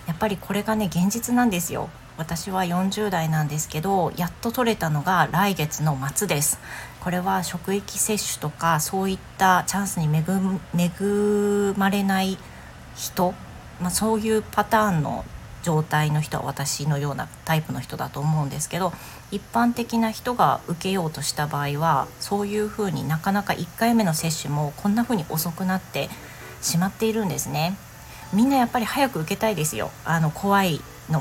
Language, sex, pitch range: Japanese, female, 155-200 Hz